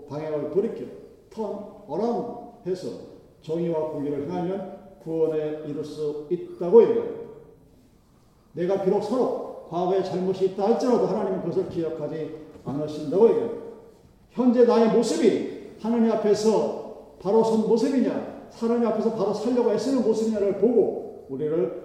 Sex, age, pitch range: male, 50-69, 155-220 Hz